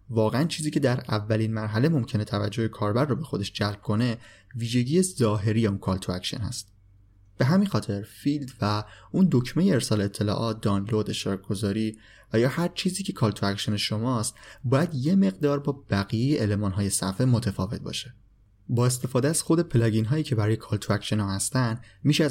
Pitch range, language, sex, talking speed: 105-130 Hz, Persian, male, 170 wpm